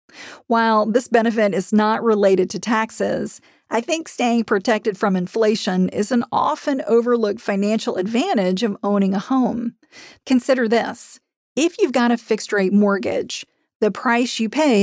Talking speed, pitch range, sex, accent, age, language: 150 wpm, 205-245 Hz, female, American, 40-59, English